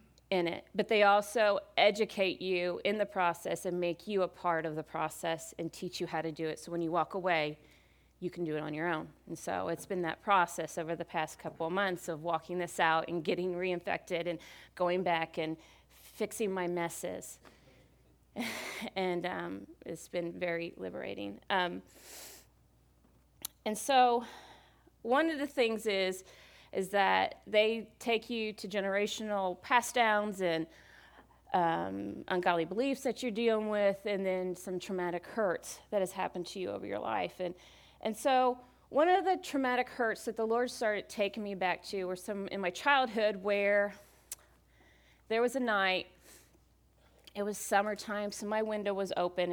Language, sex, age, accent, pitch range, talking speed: English, female, 30-49, American, 170-215 Hz, 170 wpm